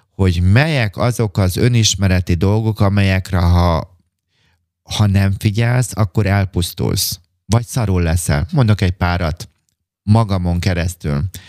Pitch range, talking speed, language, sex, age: 90-110 Hz, 110 wpm, Hungarian, male, 30-49